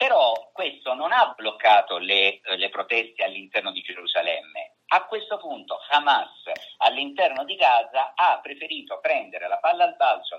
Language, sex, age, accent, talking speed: Italian, male, 50-69, native, 145 wpm